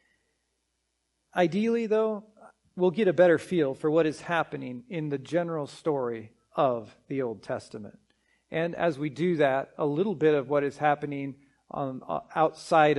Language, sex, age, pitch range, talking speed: English, male, 40-59, 130-160 Hz, 150 wpm